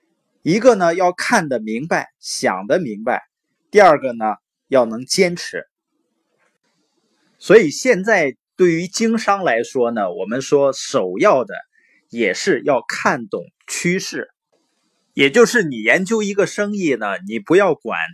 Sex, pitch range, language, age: male, 145-220 Hz, Chinese, 20-39